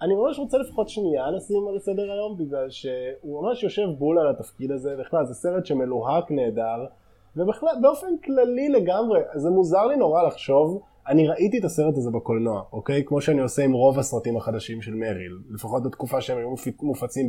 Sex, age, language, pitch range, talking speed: male, 20-39, Hebrew, 125-200 Hz, 180 wpm